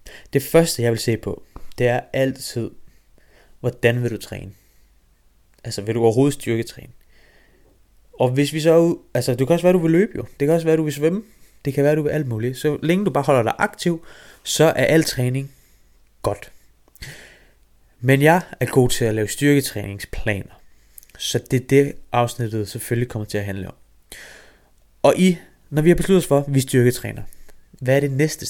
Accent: native